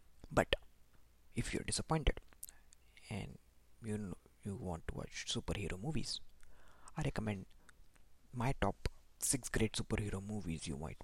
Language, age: English, 20-39